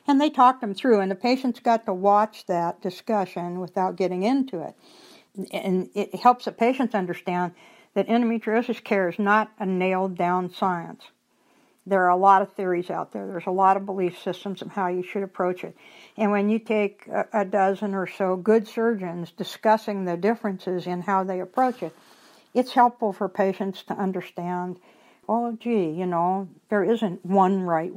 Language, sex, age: English, female, 60-79